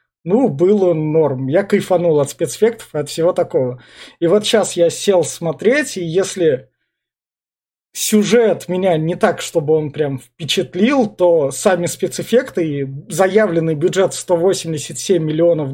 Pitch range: 165-210 Hz